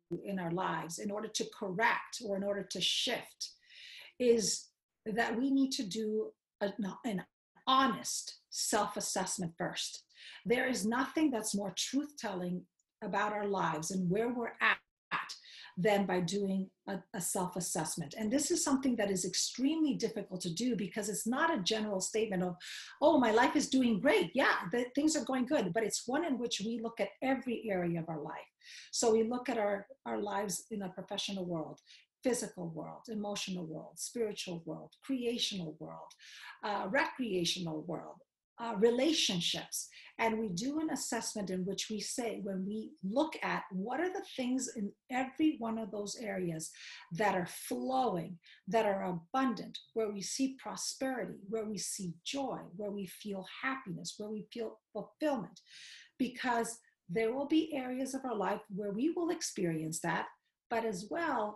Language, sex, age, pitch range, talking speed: English, female, 50-69, 190-255 Hz, 165 wpm